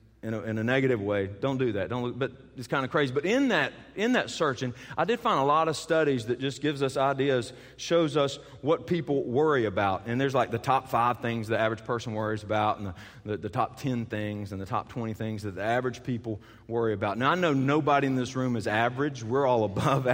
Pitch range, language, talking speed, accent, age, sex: 110-145 Hz, English, 245 wpm, American, 40-59, male